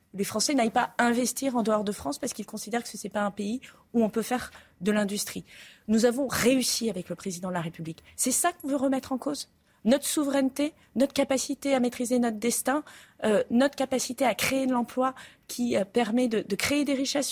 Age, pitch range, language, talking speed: 30-49, 195-265 Hz, French, 220 wpm